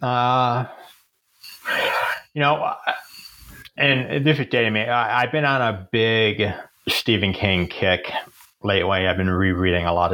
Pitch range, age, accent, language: 85-100 Hz, 30-49, American, English